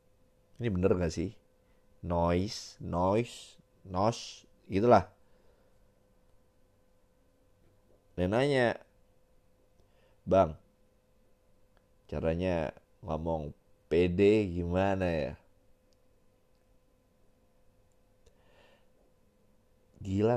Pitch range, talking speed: 85-105 Hz, 45 wpm